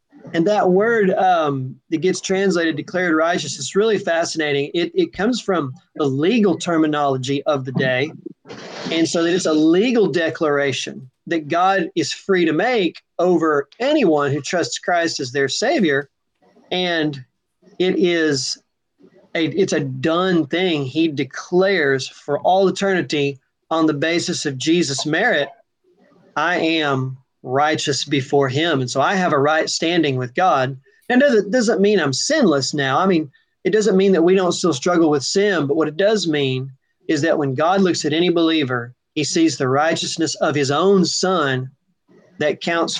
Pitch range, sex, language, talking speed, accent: 140-185 Hz, male, English, 165 wpm, American